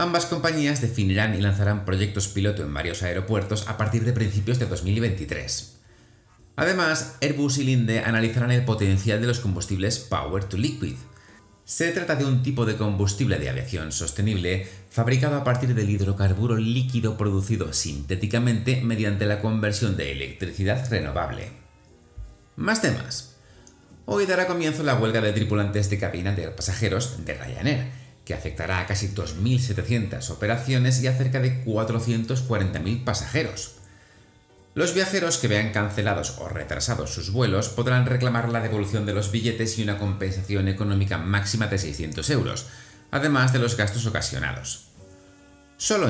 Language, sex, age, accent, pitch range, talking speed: Spanish, male, 30-49, Spanish, 100-125 Hz, 145 wpm